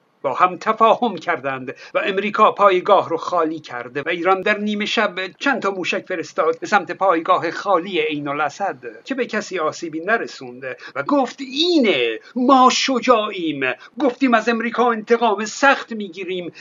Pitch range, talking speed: 170-235 Hz, 145 wpm